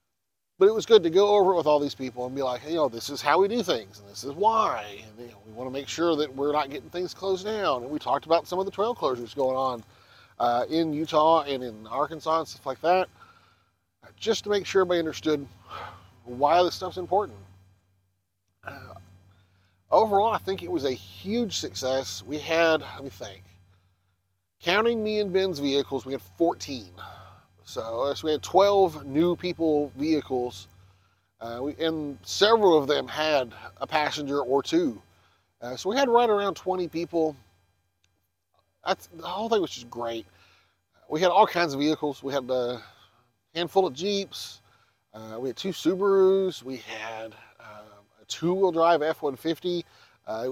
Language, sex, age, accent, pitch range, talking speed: English, male, 40-59, American, 110-175 Hz, 180 wpm